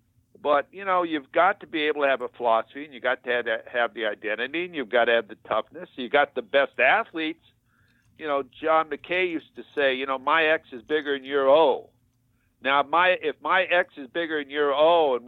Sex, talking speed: male, 230 wpm